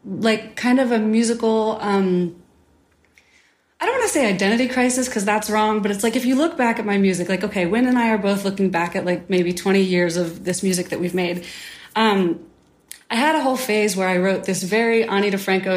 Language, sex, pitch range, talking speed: English, female, 180-220 Hz, 225 wpm